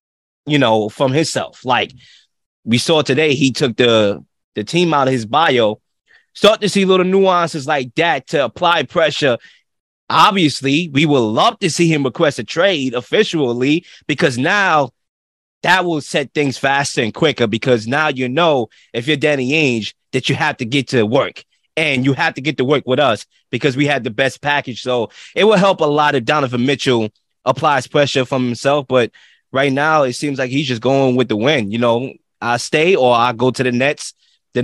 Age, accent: 20-39, American